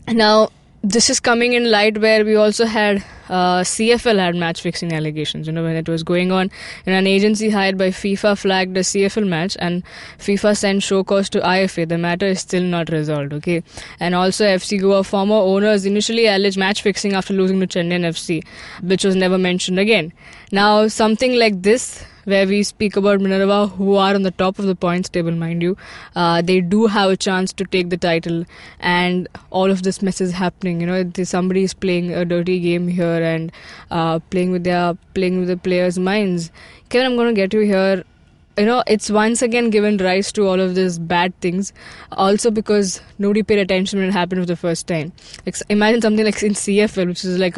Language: English